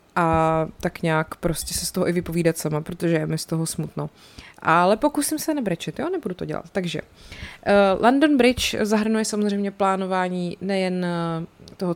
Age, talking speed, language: 20-39, 165 wpm, Czech